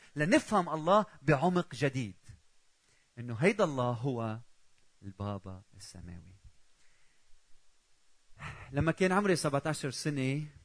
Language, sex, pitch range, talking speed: Arabic, male, 115-160 Hz, 85 wpm